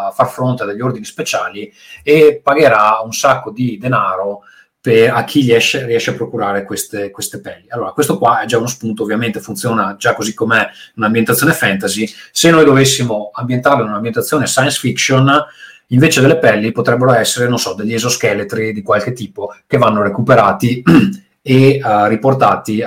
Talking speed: 165 wpm